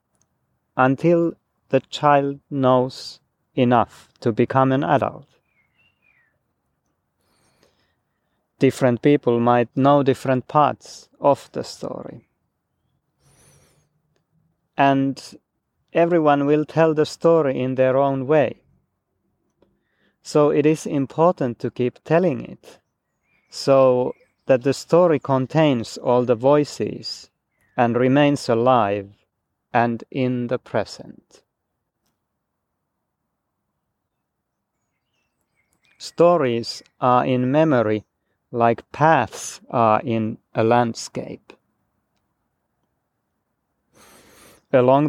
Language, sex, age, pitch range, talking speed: Finnish, male, 30-49, 120-145 Hz, 85 wpm